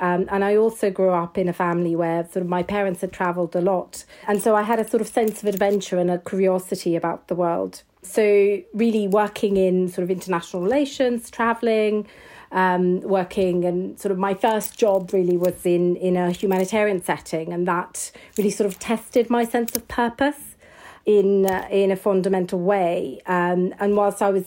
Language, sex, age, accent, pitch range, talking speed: English, female, 40-59, British, 180-205 Hz, 190 wpm